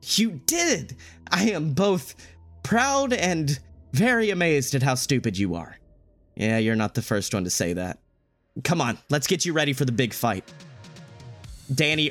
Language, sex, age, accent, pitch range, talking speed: English, male, 30-49, American, 115-150 Hz, 170 wpm